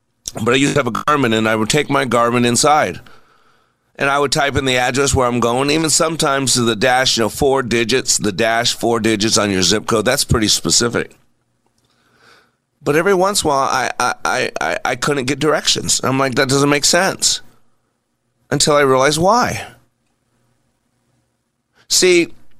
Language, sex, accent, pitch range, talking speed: English, male, American, 120-150 Hz, 180 wpm